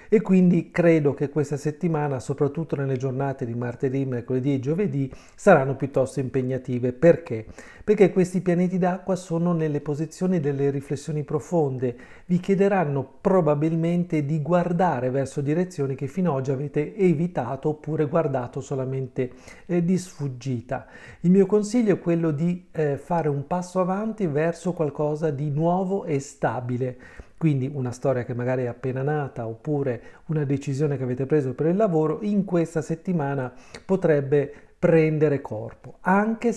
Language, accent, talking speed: Italian, native, 145 wpm